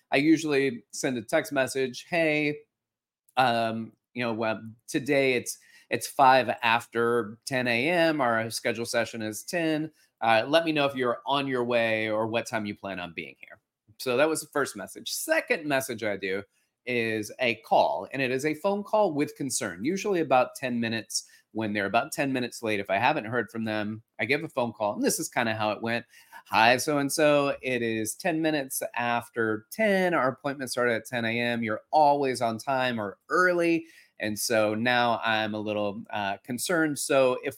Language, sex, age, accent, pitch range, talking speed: English, male, 30-49, American, 110-145 Hz, 190 wpm